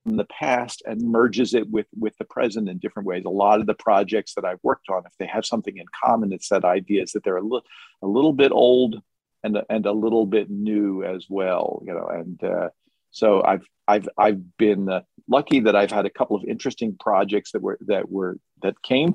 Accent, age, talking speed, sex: American, 50-69, 230 wpm, male